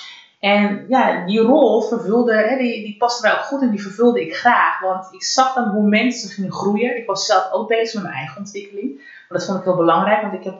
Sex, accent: female, Dutch